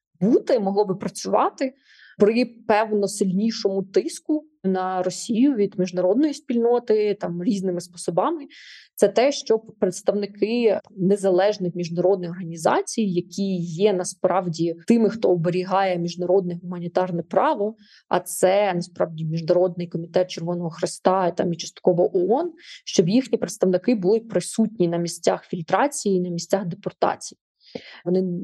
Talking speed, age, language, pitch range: 115 wpm, 20-39, Ukrainian, 180-215 Hz